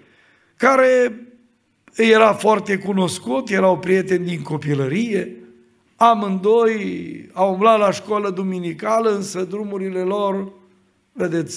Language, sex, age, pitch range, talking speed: Romanian, male, 60-79, 180-240 Hz, 95 wpm